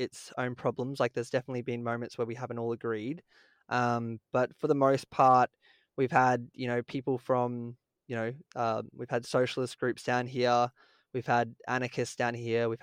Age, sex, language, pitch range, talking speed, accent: 20-39, male, English, 115-130 Hz, 185 wpm, Australian